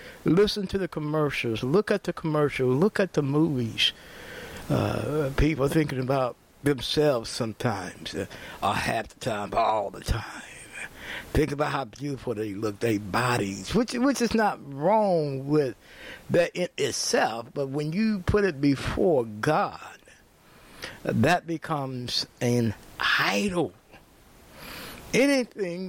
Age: 60-79